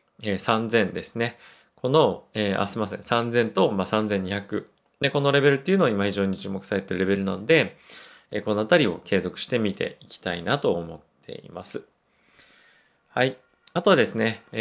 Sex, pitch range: male, 100-125 Hz